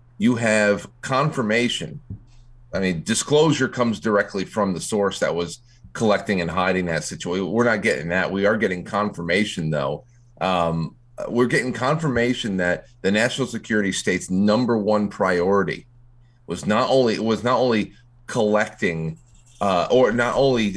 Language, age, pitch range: English, 30-49, 100-130 Hz